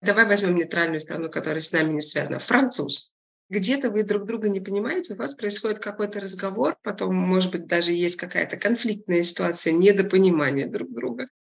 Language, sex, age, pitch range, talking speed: Russian, female, 20-39, 180-225 Hz, 165 wpm